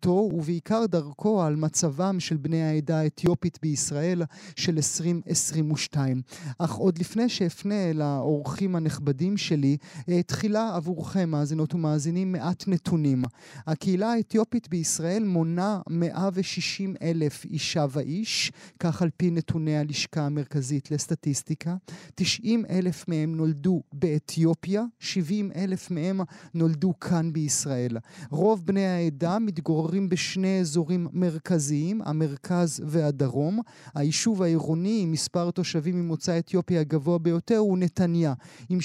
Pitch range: 155-185 Hz